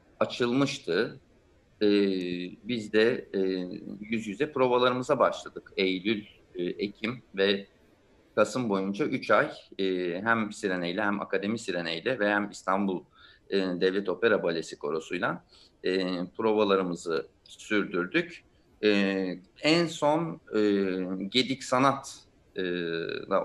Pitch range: 95-115 Hz